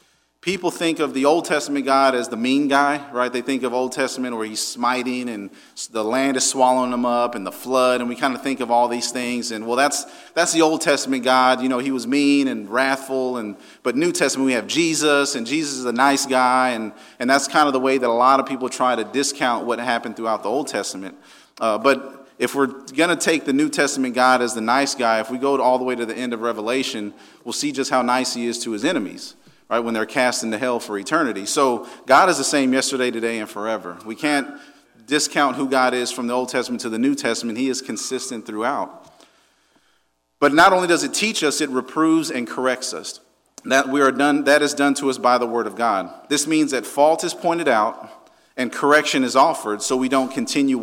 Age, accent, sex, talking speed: 40-59, American, male, 235 wpm